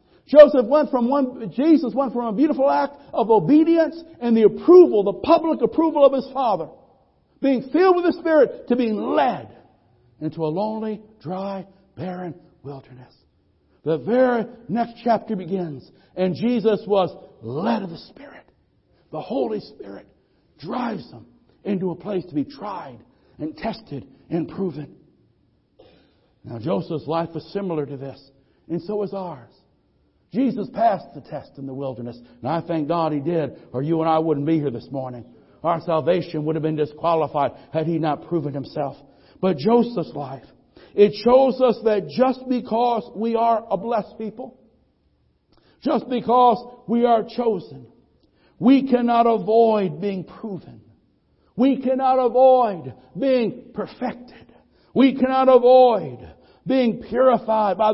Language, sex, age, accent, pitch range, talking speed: English, male, 60-79, American, 165-250 Hz, 145 wpm